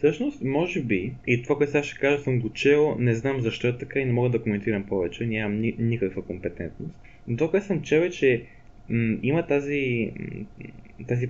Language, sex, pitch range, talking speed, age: Bulgarian, male, 110-140 Hz, 200 wpm, 20-39